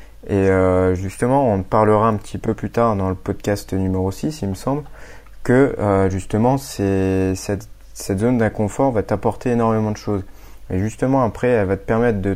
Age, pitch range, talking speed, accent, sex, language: 20-39, 95-120 Hz, 190 wpm, French, male, French